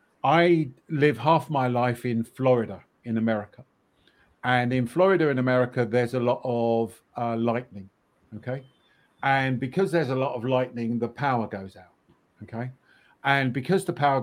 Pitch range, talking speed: 120-150 Hz, 155 wpm